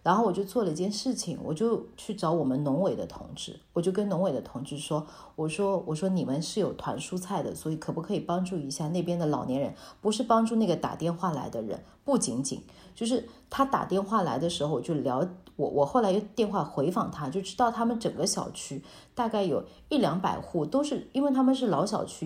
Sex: female